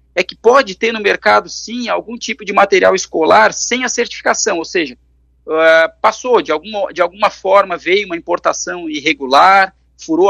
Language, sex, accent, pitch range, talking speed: Portuguese, male, Brazilian, 150-225 Hz, 155 wpm